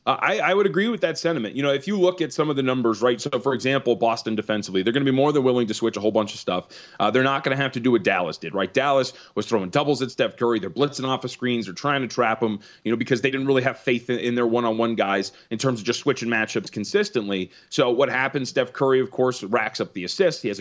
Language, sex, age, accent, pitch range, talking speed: English, male, 30-49, American, 115-145 Hz, 290 wpm